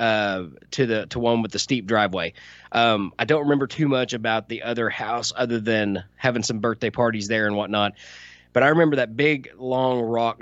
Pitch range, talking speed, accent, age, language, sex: 115-145 Hz, 200 wpm, American, 20-39, English, male